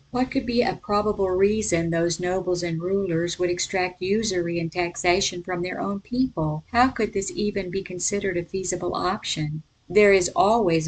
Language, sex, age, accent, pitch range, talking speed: English, female, 50-69, American, 175-205 Hz, 170 wpm